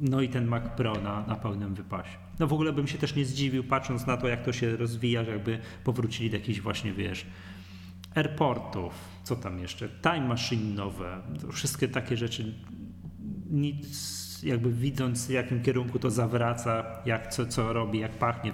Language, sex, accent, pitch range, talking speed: Polish, male, native, 105-135 Hz, 180 wpm